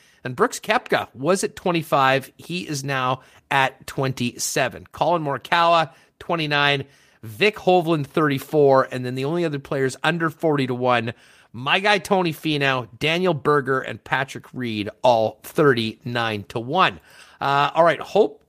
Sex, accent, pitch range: male, American, 130-165 Hz